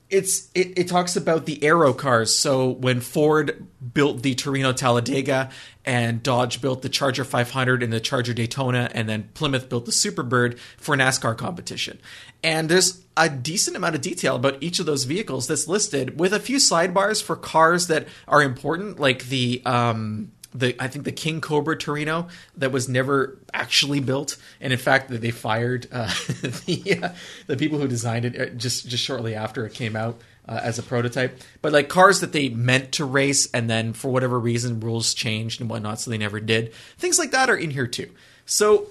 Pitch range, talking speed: 120-160 Hz, 195 wpm